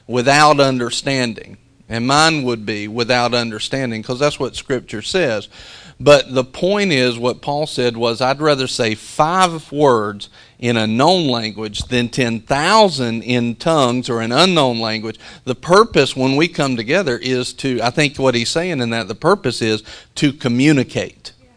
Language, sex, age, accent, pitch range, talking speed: English, male, 40-59, American, 120-150 Hz, 160 wpm